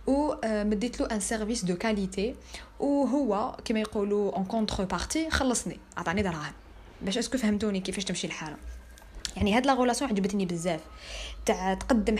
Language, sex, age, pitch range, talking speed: French, female, 20-39, 195-260 Hz, 90 wpm